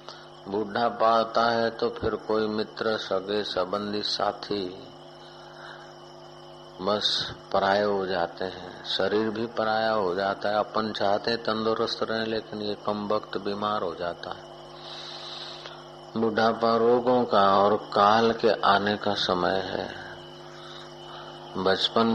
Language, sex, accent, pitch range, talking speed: Hindi, male, native, 100-115 Hz, 120 wpm